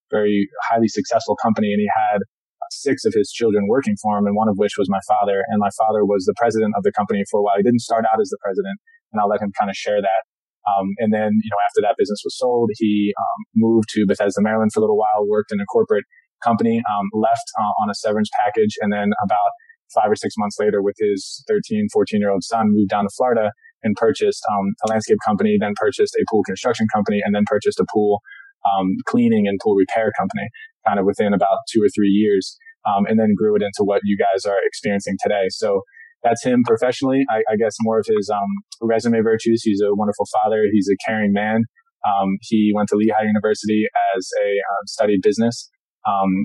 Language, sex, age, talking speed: English, male, 20-39, 225 wpm